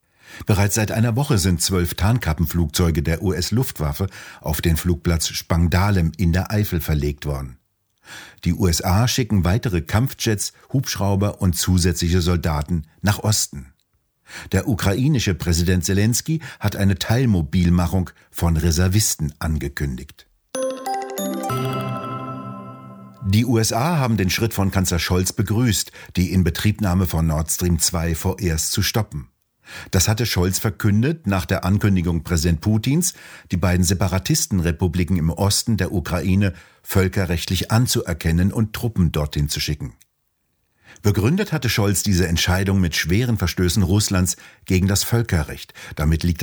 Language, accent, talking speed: German, German, 120 wpm